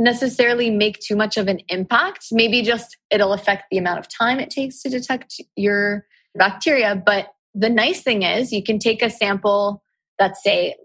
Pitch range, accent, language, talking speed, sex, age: 180-220 Hz, American, English, 185 wpm, female, 20-39